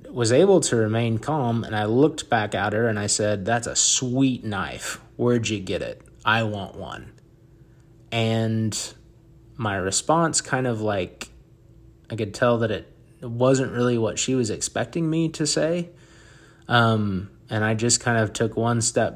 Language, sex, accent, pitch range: English, male, American, 100-120 Hz